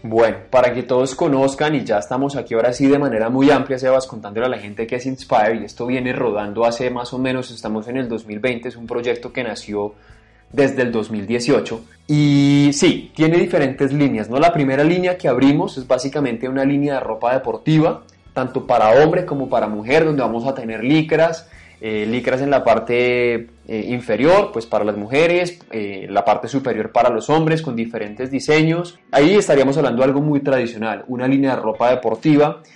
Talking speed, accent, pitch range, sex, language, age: 195 wpm, Colombian, 120-150 Hz, male, Spanish, 20-39